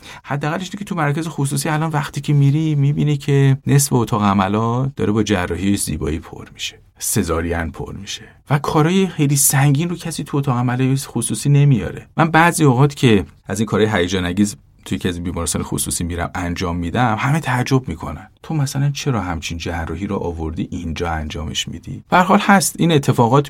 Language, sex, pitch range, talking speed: Persian, male, 90-140 Hz, 175 wpm